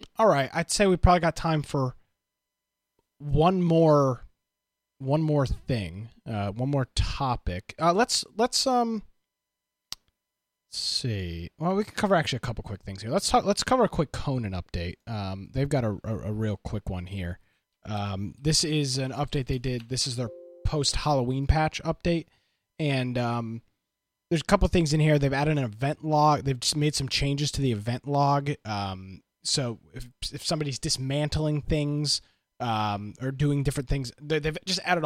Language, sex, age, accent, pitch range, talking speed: English, male, 30-49, American, 115-150 Hz, 175 wpm